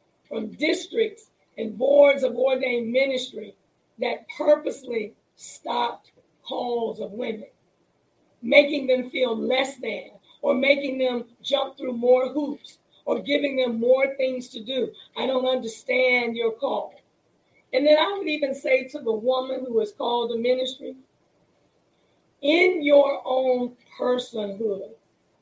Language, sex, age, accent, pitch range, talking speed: English, female, 40-59, American, 240-285 Hz, 130 wpm